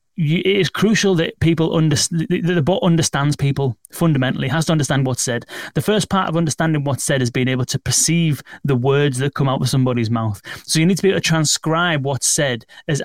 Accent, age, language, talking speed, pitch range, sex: British, 30-49, English, 220 wpm, 125-155 Hz, male